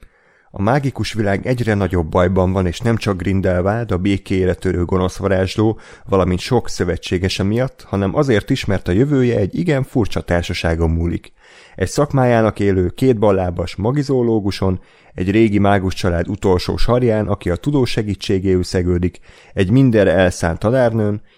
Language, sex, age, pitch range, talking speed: Hungarian, male, 30-49, 95-120 Hz, 145 wpm